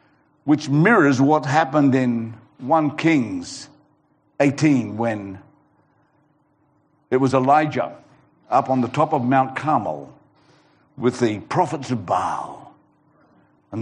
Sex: male